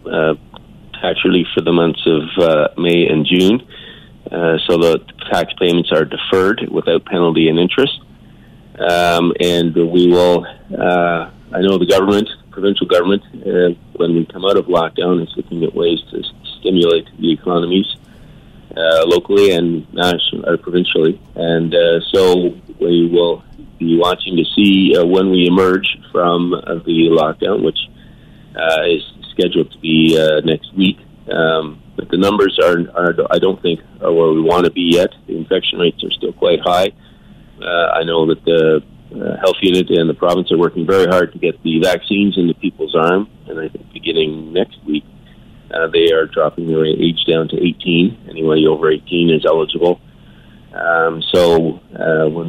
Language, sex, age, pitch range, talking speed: English, male, 40-59, 80-90 Hz, 170 wpm